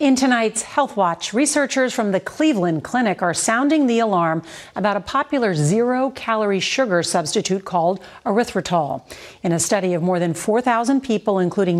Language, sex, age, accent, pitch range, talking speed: English, female, 40-59, American, 175-230 Hz, 155 wpm